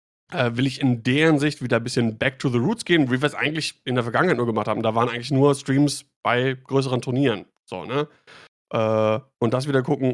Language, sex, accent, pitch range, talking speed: German, male, German, 115-130 Hz, 230 wpm